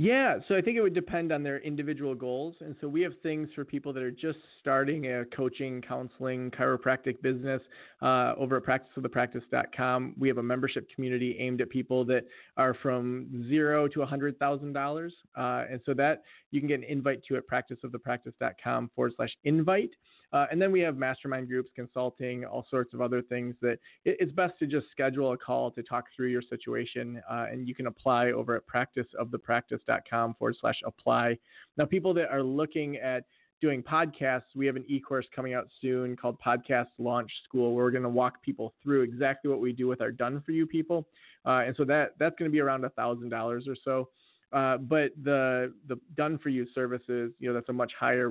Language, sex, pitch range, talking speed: English, male, 125-145 Hz, 200 wpm